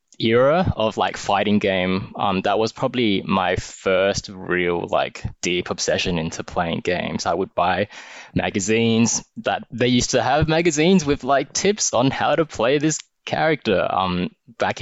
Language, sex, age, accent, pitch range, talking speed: English, male, 20-39, Australian, 95-125 Hz, 160 wpm